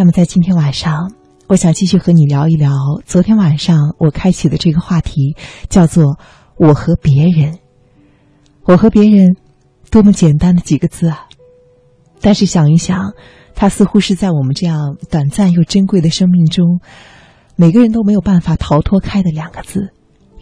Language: Chinese